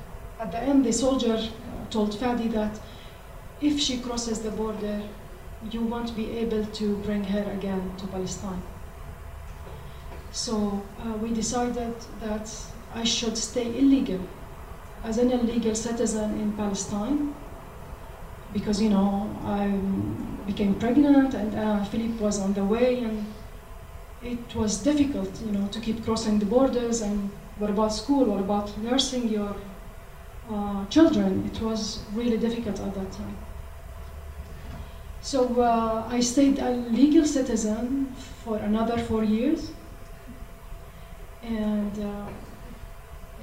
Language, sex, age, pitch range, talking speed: English, female, 30-49, 205-240 Hz, 130 wpm